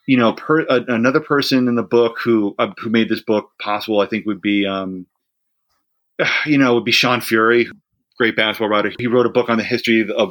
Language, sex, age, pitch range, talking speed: English, male, 30-49, 105-120 Hz, 220 wpm